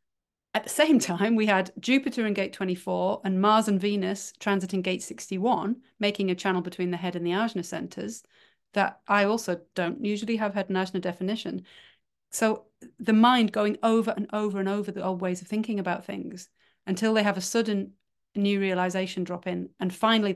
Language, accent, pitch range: English, British, 190-225 Hz